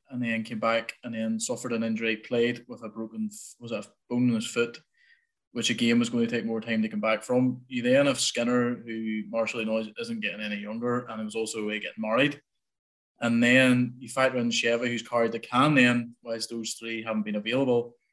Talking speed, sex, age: 215 wpm, male, 20-39